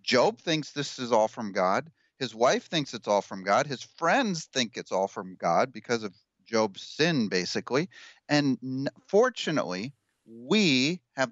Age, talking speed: 40-59, 160 wpm